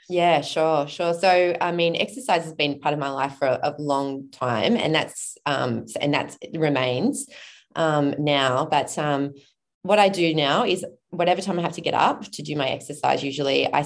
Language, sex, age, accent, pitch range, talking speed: English, female, 20-39, Australian, 145-170 Hz, 200 wpm